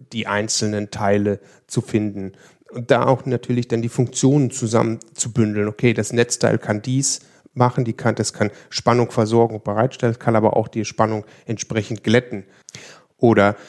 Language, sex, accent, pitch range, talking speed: German, male, German, 105-125 Hz, 155 wpm